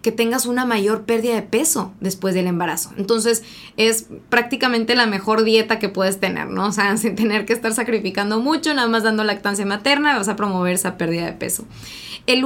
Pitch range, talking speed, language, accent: 185-225 Hz, 195 wpm, Spanish, Mexican